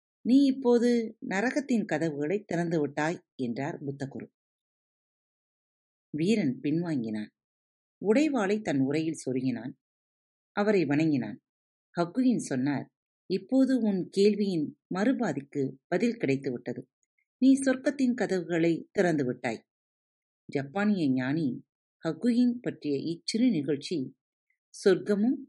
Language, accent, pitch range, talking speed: Tamil, native, 140-220 Hz, 80 wpm